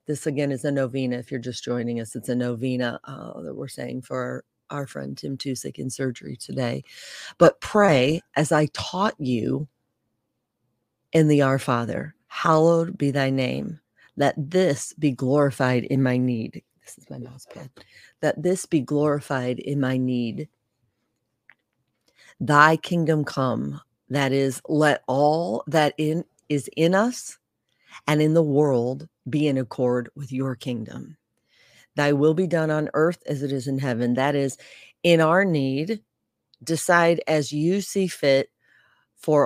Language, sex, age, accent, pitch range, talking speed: English, female, 40-59, American, 125-155 Hz, 155 wpm